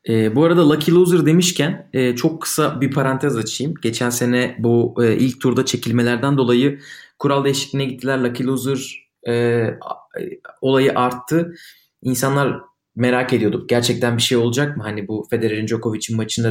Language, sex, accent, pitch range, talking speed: Turkish, male, native, 120-155 Hz, 135 wpm